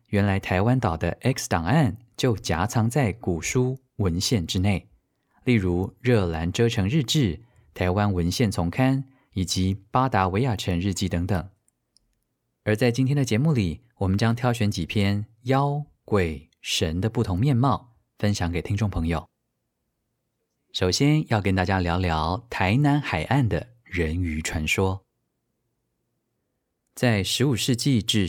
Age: 20-39